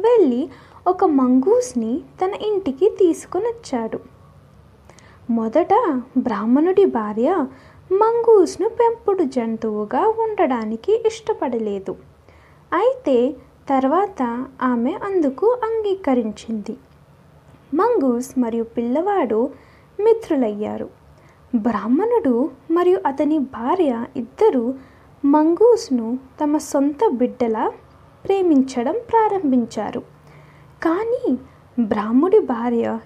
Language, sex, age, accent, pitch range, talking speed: Telugu, female, 20-39, native, 240-390 Hz, 70 wpm